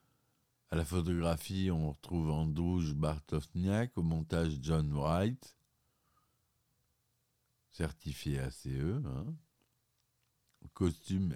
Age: 50-69